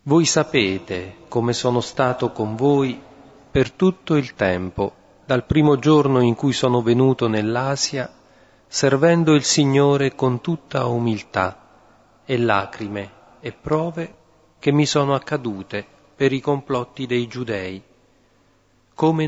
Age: 40-59